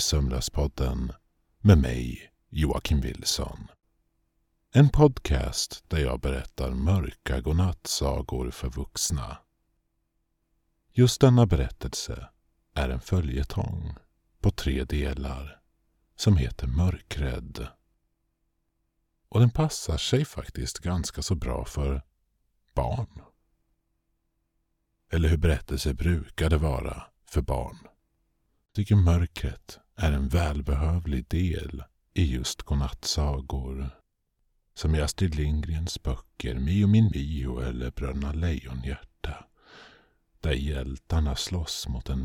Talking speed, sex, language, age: 95 wpm, male, Swedish, 50-69